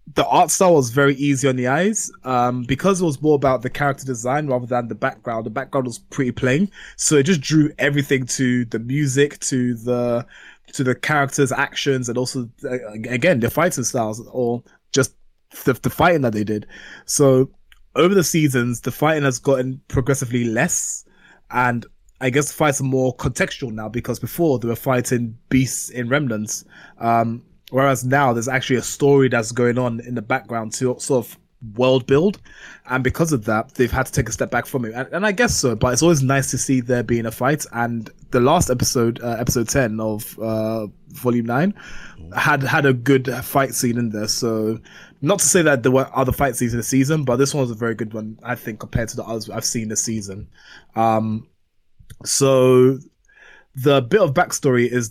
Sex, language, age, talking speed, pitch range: male, English, 20-39, 205 wpm, 120-140 Hz